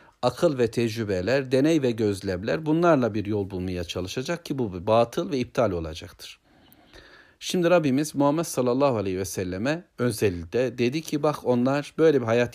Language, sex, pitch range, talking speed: Turkish, male, 105-145 Hz, 155 wpm